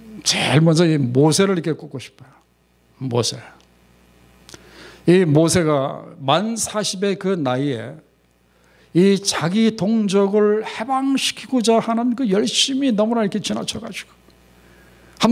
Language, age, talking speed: English, 60-79, 100 wpm